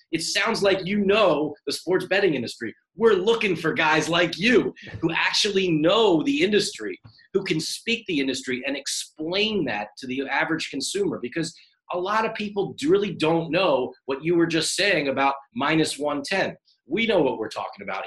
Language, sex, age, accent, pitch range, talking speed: English, male, 30-49, American, 135-195 Hz, 180 wpm